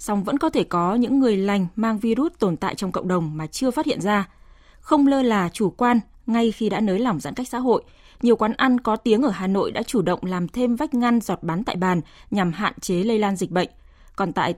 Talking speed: 255 wpm